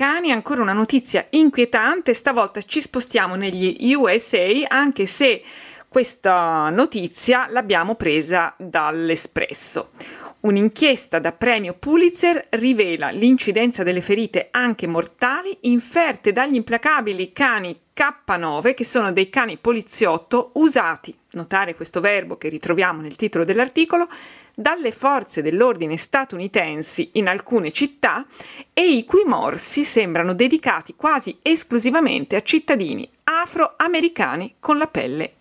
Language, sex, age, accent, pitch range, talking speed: Italian, female, 40-59, native, 195-285 Hz, 110 wpm